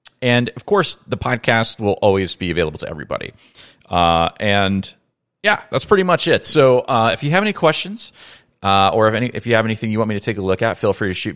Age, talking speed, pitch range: 30-49, 240 wpm, 85-110 Hz